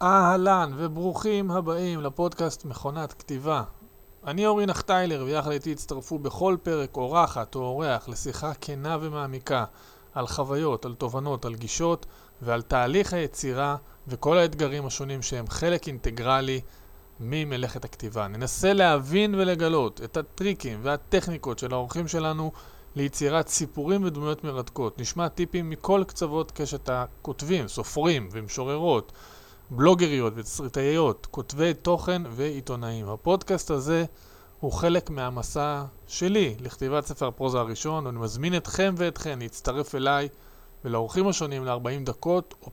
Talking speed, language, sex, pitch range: 115 wpm, Hebrew, male, 125-170 Hz